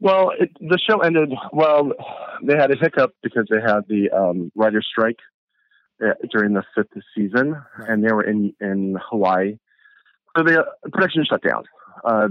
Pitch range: 100-150 Hz